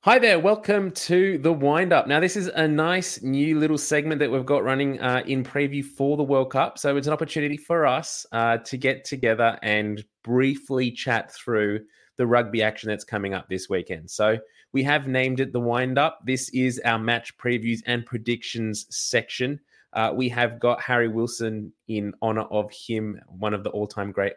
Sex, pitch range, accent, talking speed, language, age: male, 105-135 Hz, Australian, 190 wpm, English, 20-39